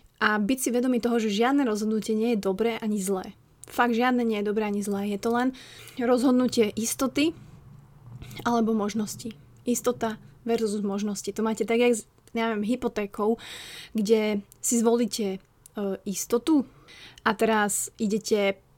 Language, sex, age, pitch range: Slovak, female, 20-39, 205-235 Hz